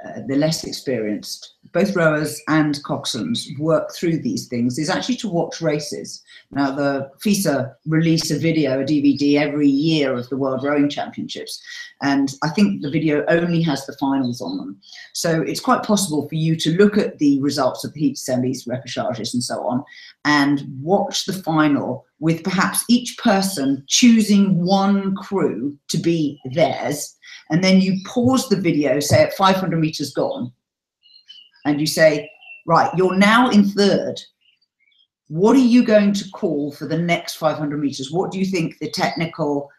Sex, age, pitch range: female, 40-59, 145-195 Hz